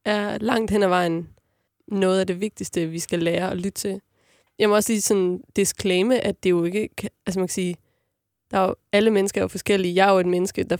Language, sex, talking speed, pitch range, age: Danish, female, 235 wpm, 185-210 Hz, 20-39